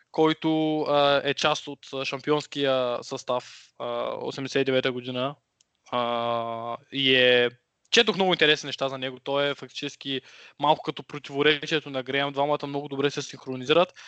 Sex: male